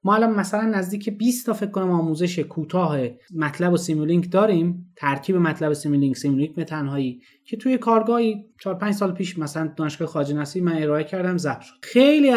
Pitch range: 145-195 Hz